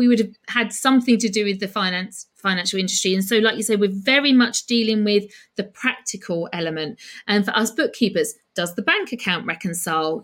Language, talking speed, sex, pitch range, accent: English, 200 wpm, female, 190-245 Hz, British